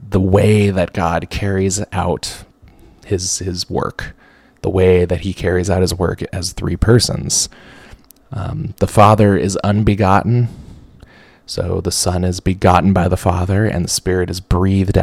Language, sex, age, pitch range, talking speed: English, male, 20-39, 90-105 Hz, 150 wpm